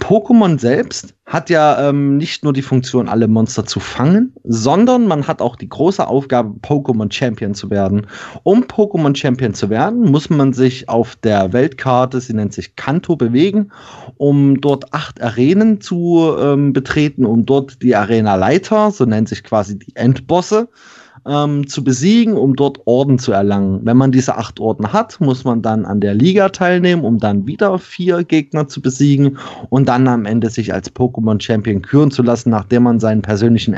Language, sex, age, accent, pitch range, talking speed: German, male, 30-49, German, 115-150 Hz, 180 wpm